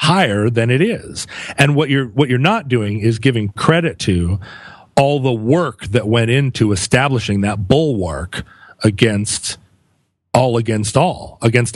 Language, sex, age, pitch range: English, male, 40-59, 105-130 Hz